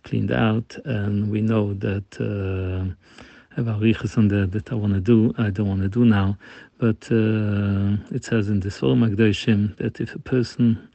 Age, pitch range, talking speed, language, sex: 50-69, 100-115 Hz, 180 wpm, English, male